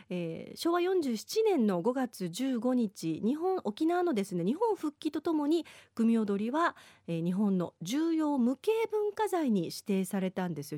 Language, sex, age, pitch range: Japanese, female, 40-59, 190-295 Hz